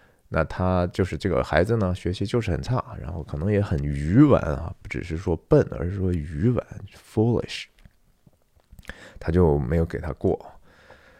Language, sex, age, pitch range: Chinese, male, 20-39, 80-105 Hz